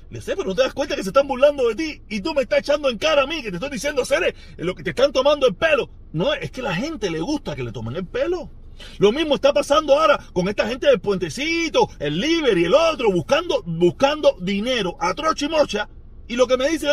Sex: male